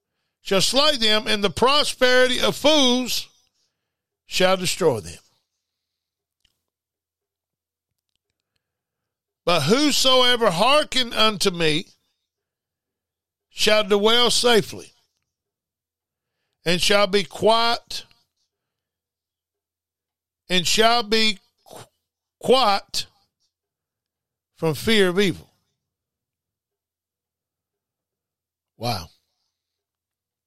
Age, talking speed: 50-69, 65 wpm